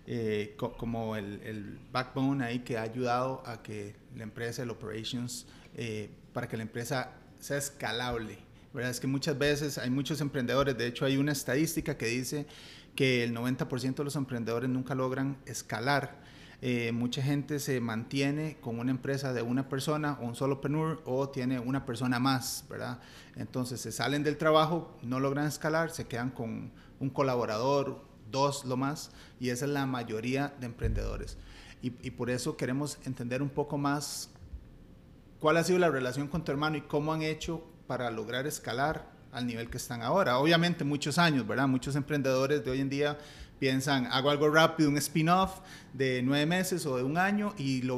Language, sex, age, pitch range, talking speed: English, male, 30-49, 120-145 Hz, 185 wpm